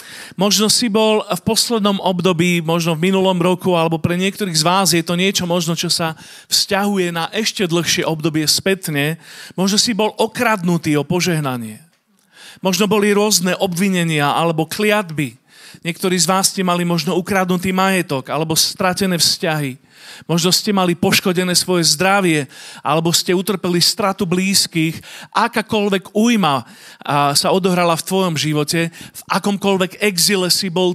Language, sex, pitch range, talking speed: Slovak, male, 170-210 Hz, 140 wpm